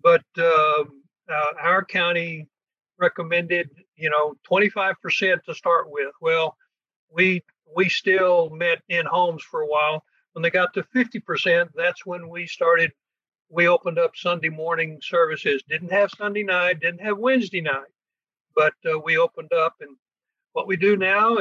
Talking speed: 155 wpm